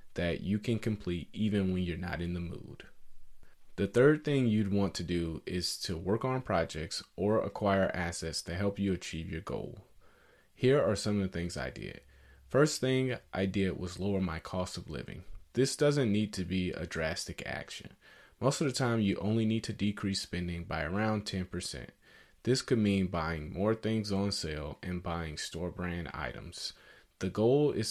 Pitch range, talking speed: 85-110 Hz, 185 wpm